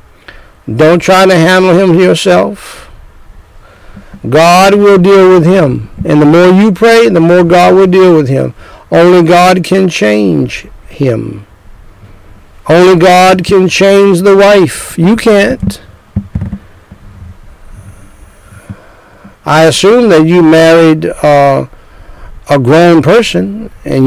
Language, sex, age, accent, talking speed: English, male, 60-79, American, 115 wpm